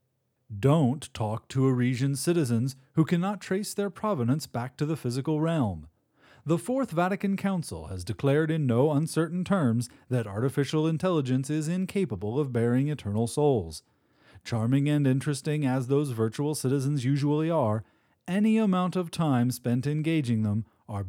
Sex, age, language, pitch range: male, 30-49, English, 120-160 Hz